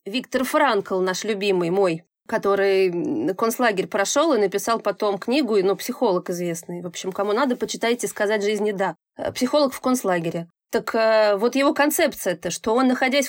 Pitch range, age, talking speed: 210-275 Hz, 30-49, 155 wpm